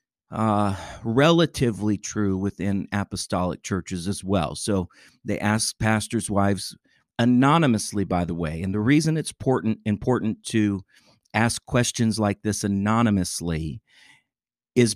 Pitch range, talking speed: 95-120 Hz, 115 wpm